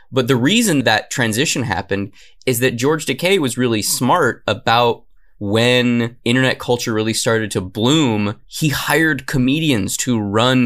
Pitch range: 110-135 Hz